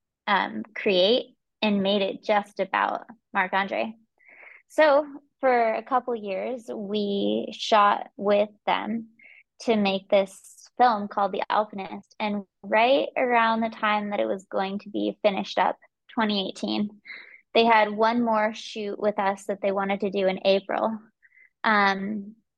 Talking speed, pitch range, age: 140 wpm, 195-220 Hz, 20-39